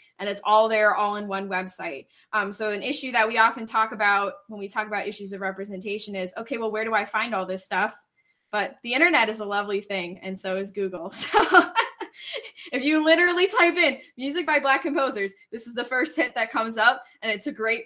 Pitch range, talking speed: 210-290 Hz, 225 wpm